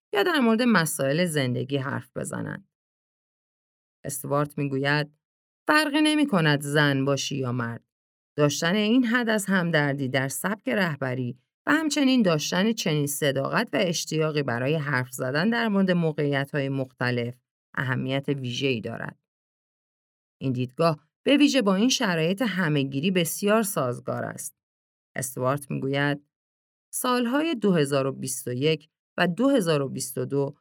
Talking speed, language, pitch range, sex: 115 wpm, Persian, 135-200 Hz, female